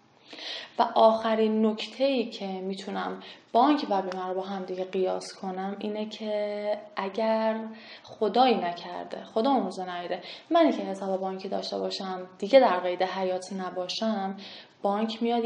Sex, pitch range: female, 200-250 Hz